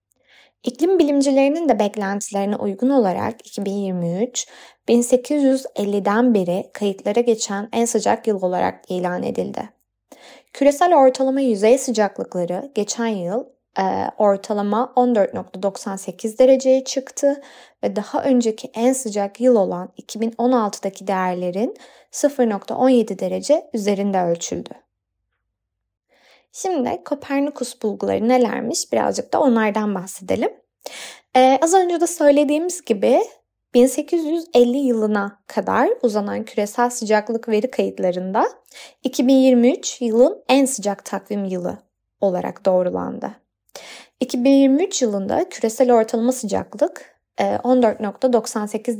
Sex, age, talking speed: female, 20-39, 95 wpm